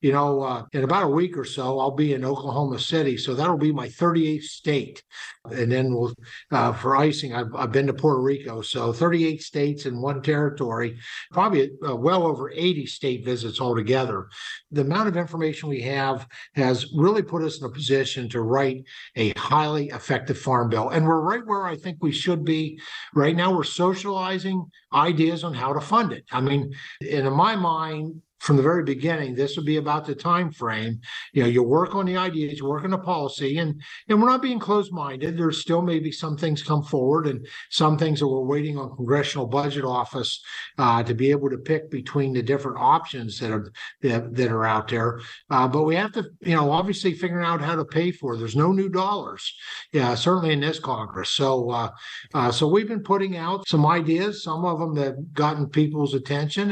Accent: American